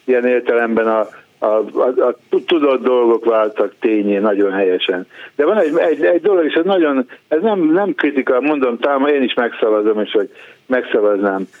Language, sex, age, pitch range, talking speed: Hungarian, male, 60-79, 115-165 Hz, 170 wpm